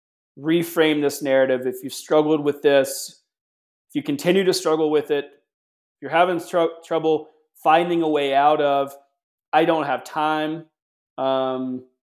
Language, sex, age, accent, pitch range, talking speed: English, male, 30-49, American, 125-150 Hz, 150 wpm